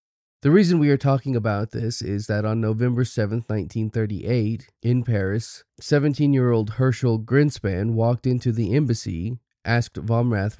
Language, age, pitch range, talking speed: English, 30-49, 105-125 Hz, 135 wpm